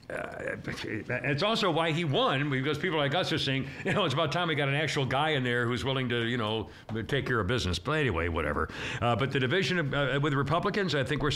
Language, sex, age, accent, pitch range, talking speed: English, male, 60-79, American, 130-180 Hz, 245 wpm